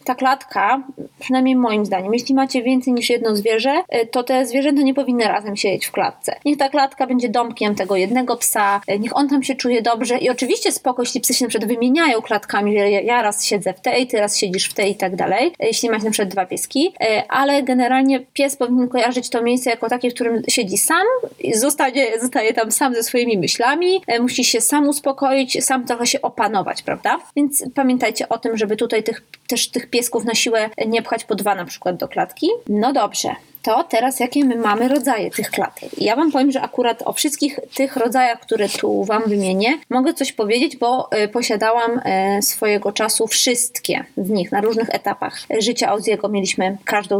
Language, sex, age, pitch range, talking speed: Polish, female, 20-39, 220-265 Hz, 195 wpm